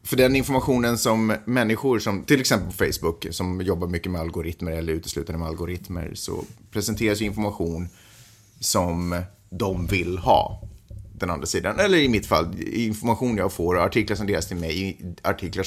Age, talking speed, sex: 30-49, 165 wpm, male